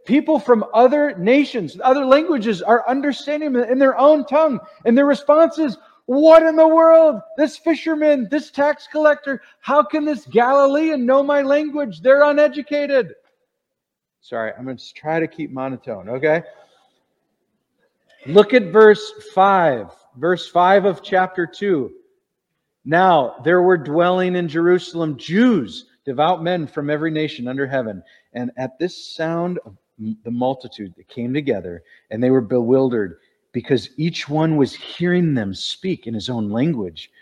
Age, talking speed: 50-69, 145 wpm